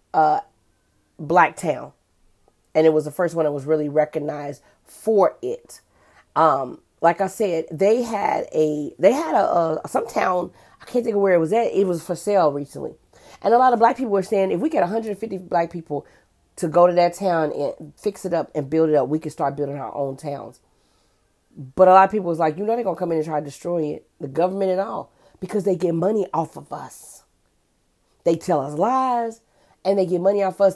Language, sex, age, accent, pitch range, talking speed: English, female, 30-49, American, 155-205 Hz, 220 wpm